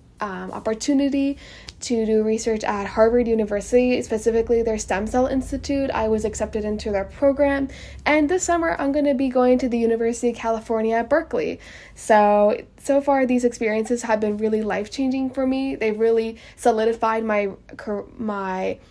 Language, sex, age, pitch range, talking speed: English, female, 10-29, 215-250 Hz, 160 wpm